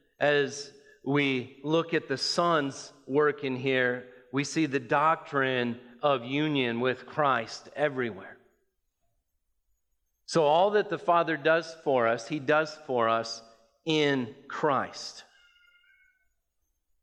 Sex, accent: male, American